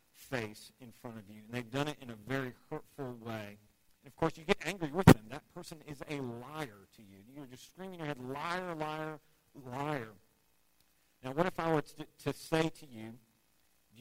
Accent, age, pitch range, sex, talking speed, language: American, 50-69, 110-150 Hz, male, 210 wpm, English